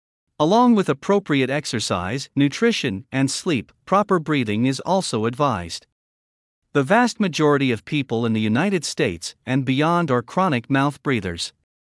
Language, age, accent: English, 50-69, American